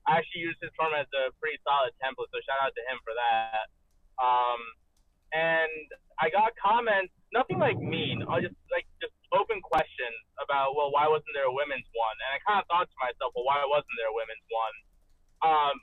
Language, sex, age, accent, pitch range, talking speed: English, male, 20-39, American, 130-190 Hz, 205 wpm